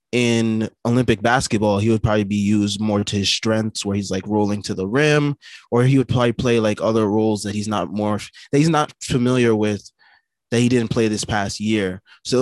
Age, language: 20-39, English